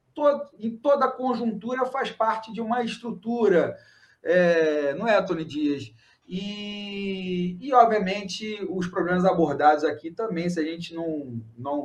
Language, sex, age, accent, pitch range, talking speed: Portuguese, male, 40-59, Brazilian, 150-230 Hz, 125 wpm